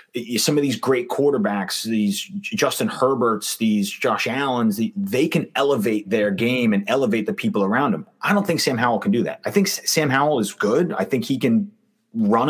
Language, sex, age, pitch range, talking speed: English, male, 30-49, 125-205 Hz, 195 wpm